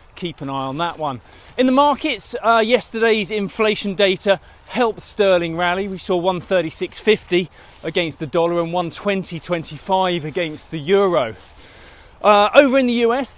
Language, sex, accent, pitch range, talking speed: English, male, British, 165-205 Hz, 145 wpm